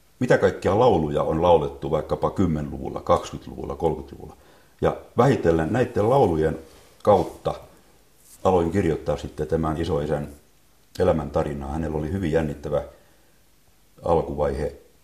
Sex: male